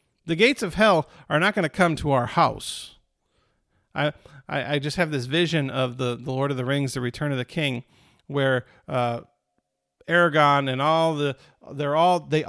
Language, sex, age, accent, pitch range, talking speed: English, male, 50-69, American, 135-175 Hz, 190 wpm